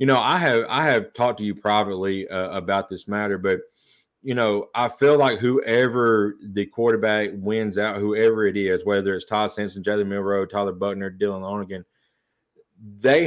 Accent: American